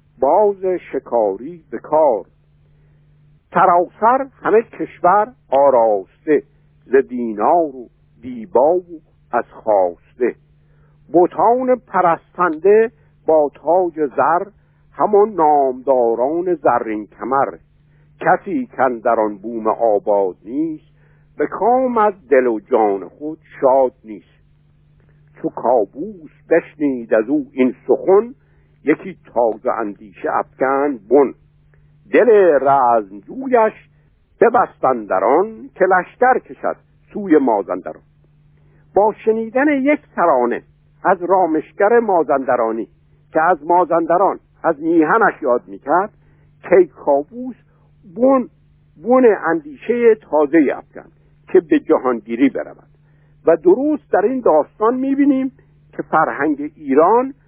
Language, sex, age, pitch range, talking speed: Persian, male, 60-79, 140-215 Hz, 90 wpm